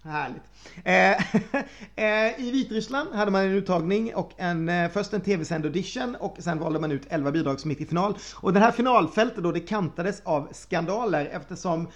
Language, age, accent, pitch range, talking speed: Swedish, 30-49, native, 160-210 Hz, 165 wpm